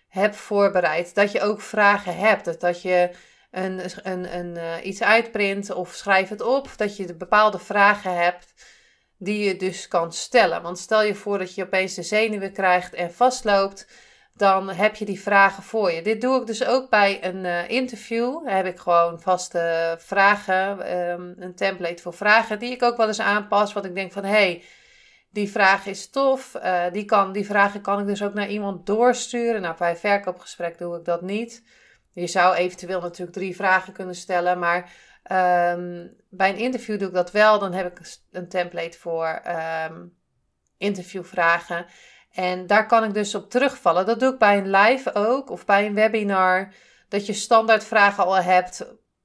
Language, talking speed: Dutch, 190 wpm